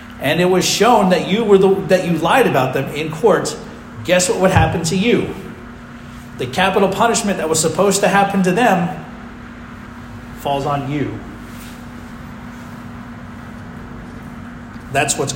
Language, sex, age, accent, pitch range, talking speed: English, male, 40-59, American, 120-185 Hz, 140 wpm